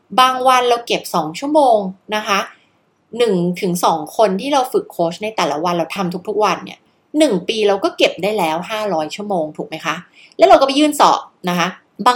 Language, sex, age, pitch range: Thai, female, 20-39, 175-255 Hz